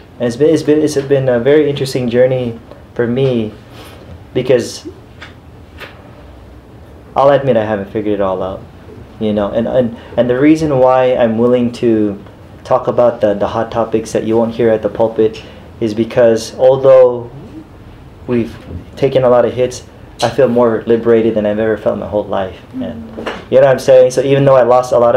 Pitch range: 110-135 Hz